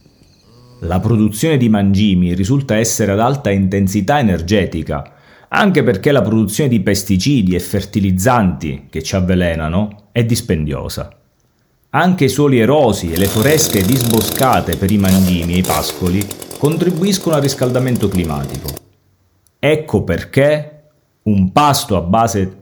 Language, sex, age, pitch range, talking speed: Italian, male, 40-59, 95-130 Hz, 125 wpm